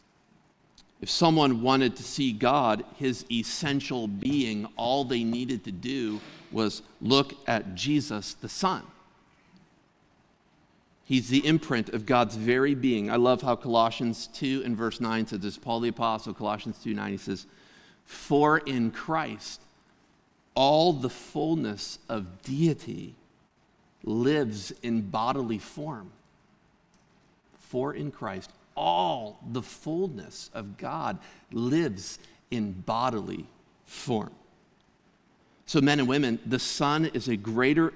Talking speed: 125 wpm